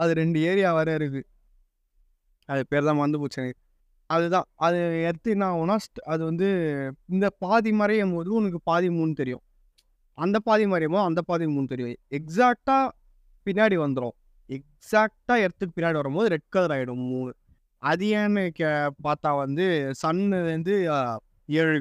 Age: 20-39